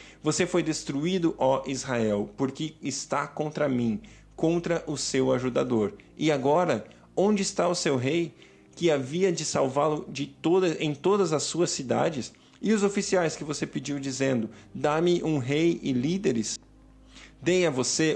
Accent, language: Brazilian, Portuguese